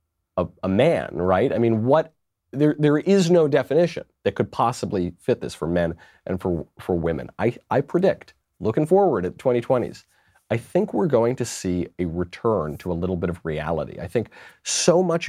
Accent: American